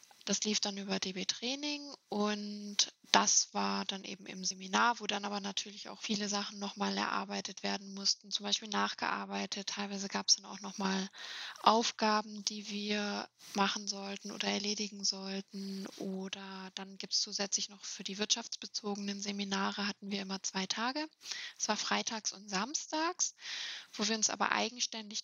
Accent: German